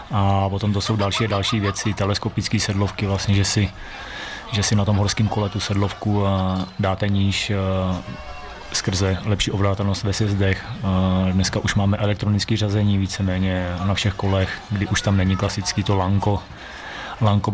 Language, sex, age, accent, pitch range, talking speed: Czech, male, 30-49, native, 95-105 Hz, 155 wpm